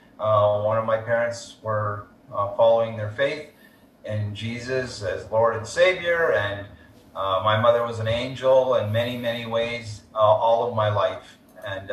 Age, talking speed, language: 30-49, 165 wpm, English